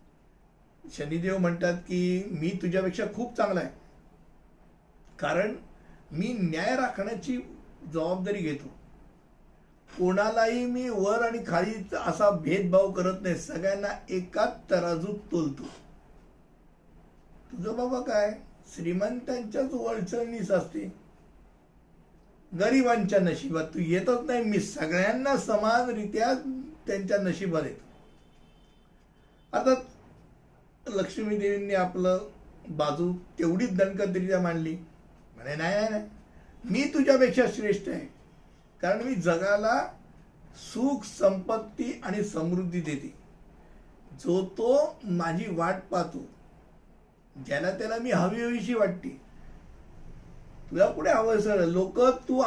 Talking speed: 70 wpm